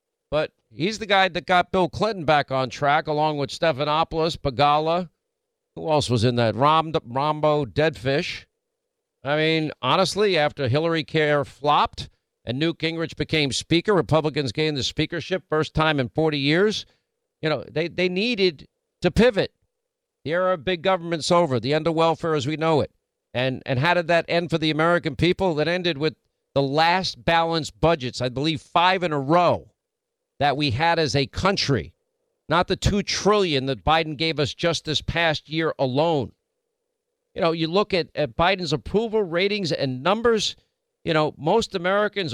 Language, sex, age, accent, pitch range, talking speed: English, male, 50-69, American, 150-200 Hz, 175 wpm